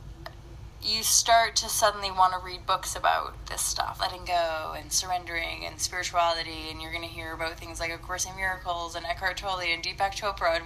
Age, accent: 20-39, American